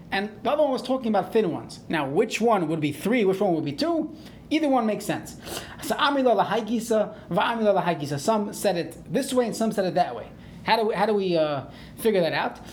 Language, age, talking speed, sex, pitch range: English, 30-49, 205 wpm, male, 180-235 Hz